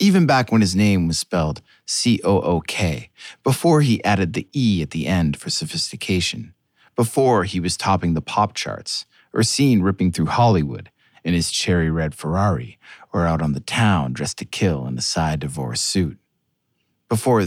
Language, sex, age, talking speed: English, male, 30-49, 170 wpm